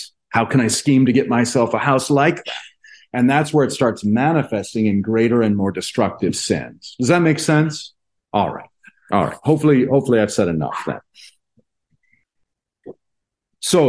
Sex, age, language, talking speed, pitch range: male, 40-59, English, 165 wpm, 100-135 Hz